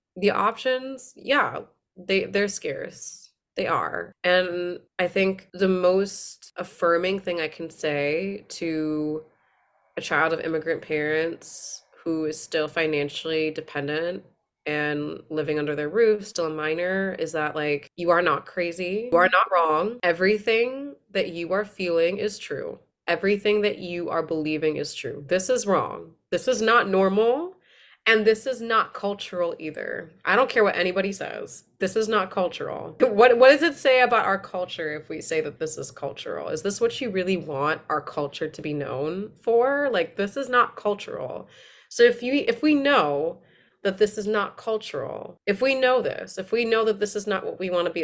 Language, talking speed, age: English, 180 wpm, 20-39